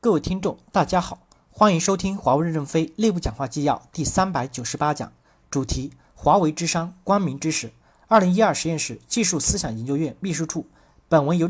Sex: male